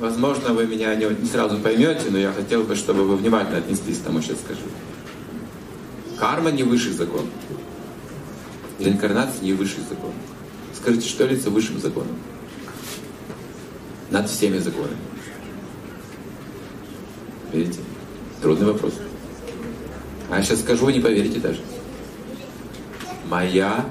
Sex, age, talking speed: male, 40-59, 120 wpm